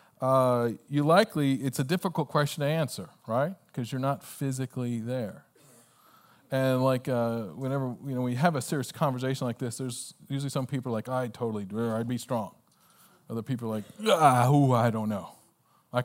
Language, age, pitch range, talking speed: English, 40-59, 120-150 Hz, 180 wpm